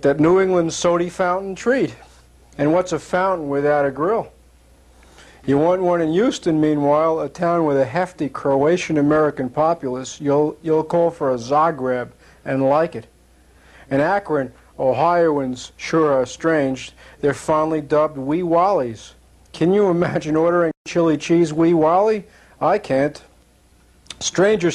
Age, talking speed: 50-69, 140 wpm